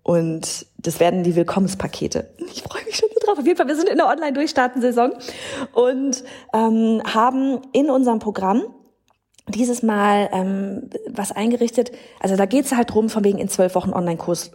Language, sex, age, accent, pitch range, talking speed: German, female, 30-49, German, 185-250 Hz, 175 wpm